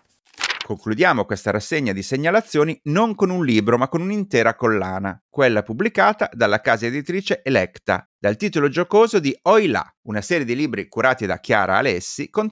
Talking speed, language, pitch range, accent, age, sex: 165 wpm, Italian, 110-175 Hz, native, 30-49, male